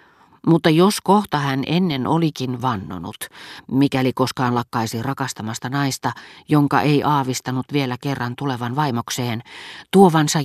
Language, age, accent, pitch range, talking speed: Finnish, 40-59, native, 120-155 Hz, 115 wpm